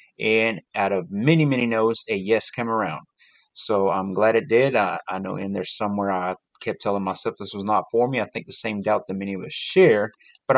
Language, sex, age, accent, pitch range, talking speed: English, male, 30-49, American, 100-125 Hz, 235 wpm